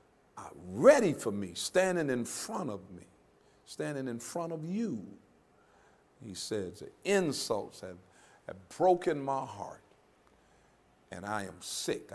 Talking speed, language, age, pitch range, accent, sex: 135 wpm, English, 50-69, 105-165 Hz, American, male